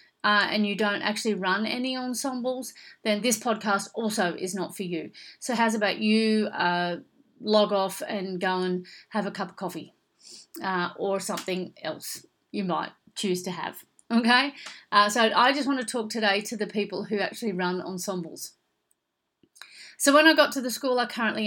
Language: English